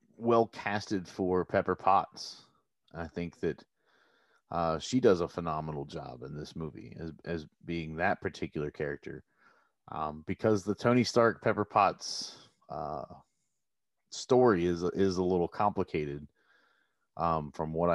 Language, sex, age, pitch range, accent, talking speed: English, male, 30-49, 85-110 Hz, American, 135 wpm